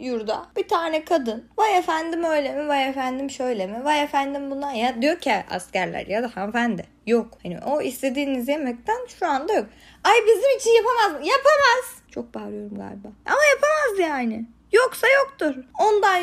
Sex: female